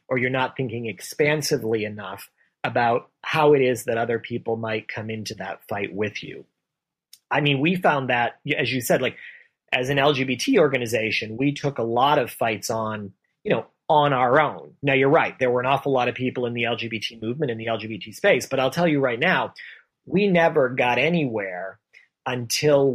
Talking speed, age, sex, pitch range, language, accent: 195 wpm, 30-49, male, 115-145 Hz, English, American